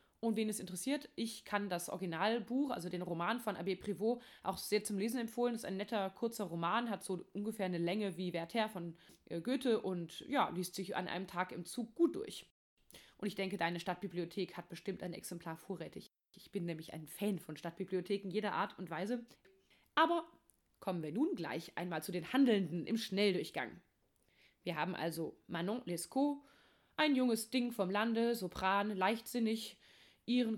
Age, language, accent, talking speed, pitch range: 20-39, German, German, 175 wpm, 180-230 Hz